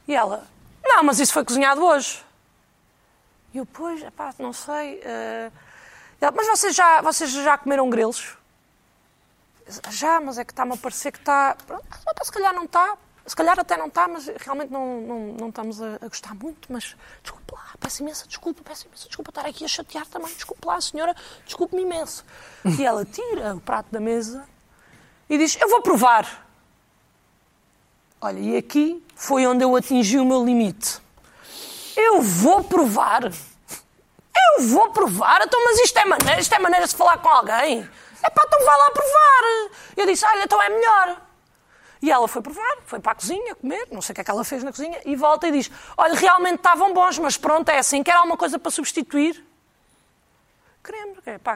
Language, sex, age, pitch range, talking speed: Portuguese, female, 20-39, 255-355 Hz, 180 wpm